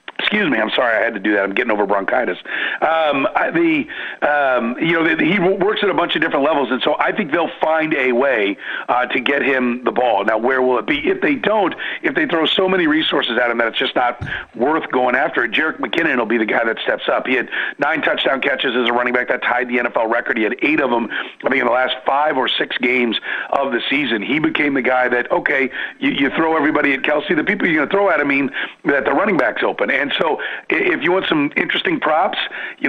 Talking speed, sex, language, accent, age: 260 wpm, male, English, American, 40-59